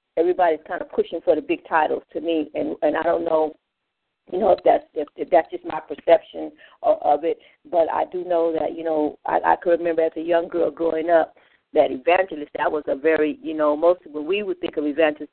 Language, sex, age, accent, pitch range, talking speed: English, female, 40-59, American, 155-175 Hz, 240 wpm